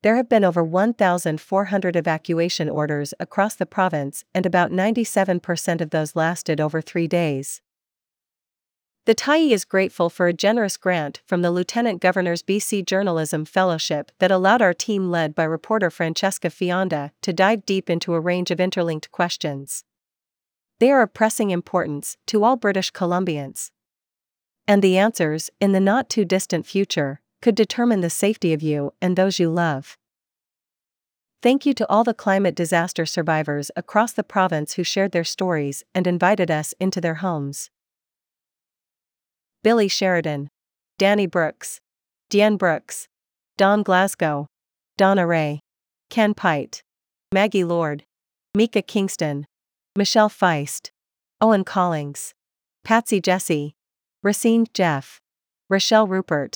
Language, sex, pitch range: English, female, 160-200 Hz